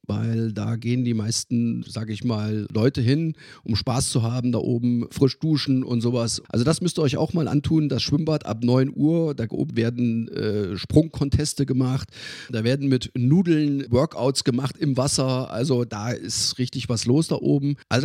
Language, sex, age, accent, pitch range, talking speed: German, male, 40-59, German, 115-145 Hz, 185 wpm